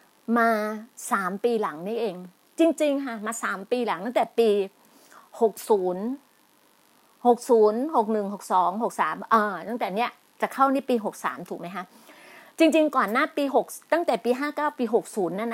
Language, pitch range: Thai, 220-285 Hz